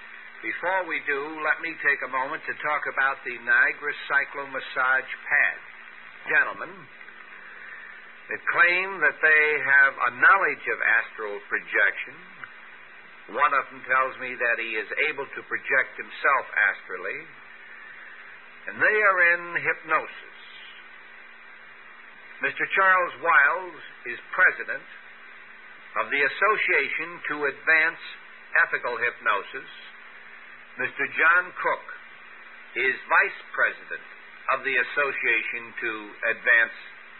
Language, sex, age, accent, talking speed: English, male, 60-79, American, 110 wpm